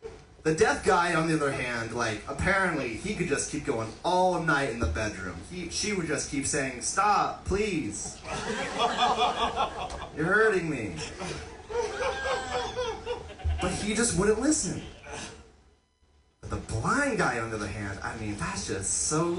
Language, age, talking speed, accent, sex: English, 30-49, 140 wpm, American, male